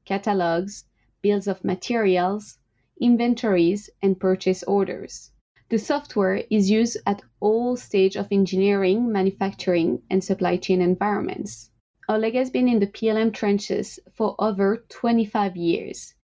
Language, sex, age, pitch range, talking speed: English, female, 20-39, 190-225 Hz, 120 wpm